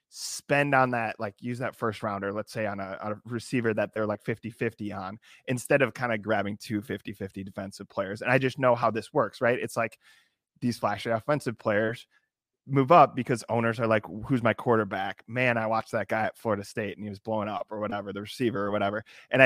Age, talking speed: 20-39, 225 wpm